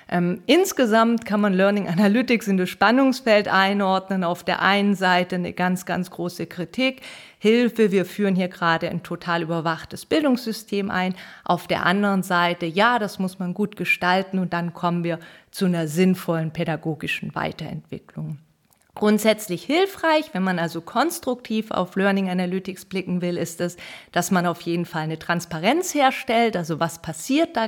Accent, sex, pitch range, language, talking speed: German, female, 170-205 Hz, German, 160 wpm